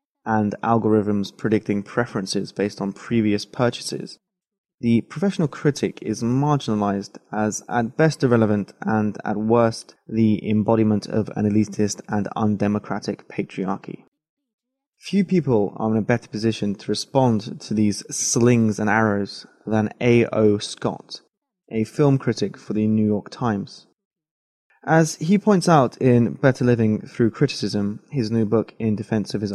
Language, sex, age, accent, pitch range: Chinese, male, 20-39, British, 105-130 Hz